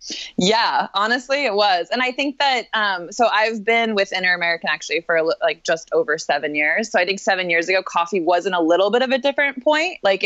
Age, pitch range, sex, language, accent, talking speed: 20-39, 170-215 Hz, female, English, American, 215 wpm